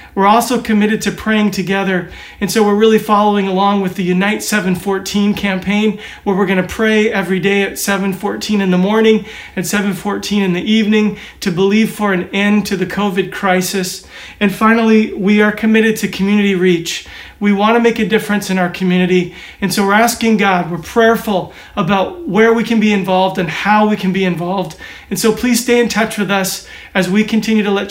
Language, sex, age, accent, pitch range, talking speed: English, male, 40-59, American, 195-220 Hz, 195 wpm